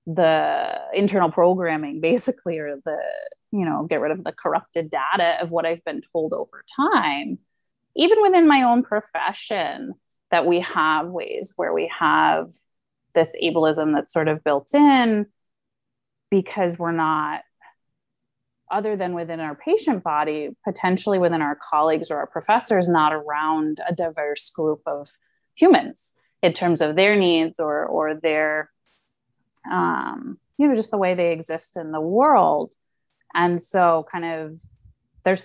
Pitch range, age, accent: 160-200 Hz, 30-49, American